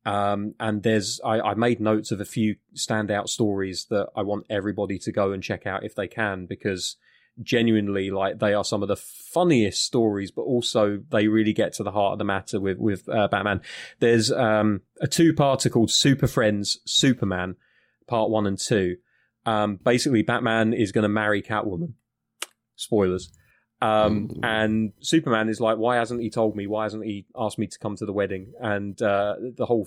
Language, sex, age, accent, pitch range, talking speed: English, male, 20-39, British, 100-115 Hz, 190 wpm